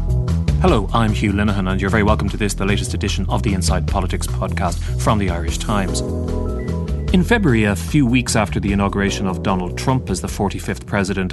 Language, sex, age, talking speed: English, male, 30-49, 195 wpm